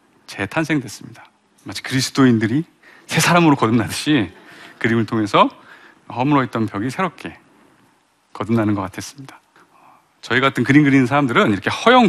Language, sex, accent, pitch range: Korean, male, native, 110-155 Hz